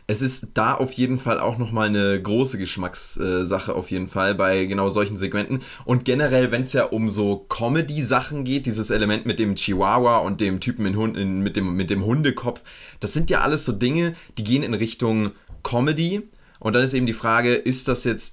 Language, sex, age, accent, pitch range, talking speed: German, male, 20-39, German, 105-130 Hz, 195 wpm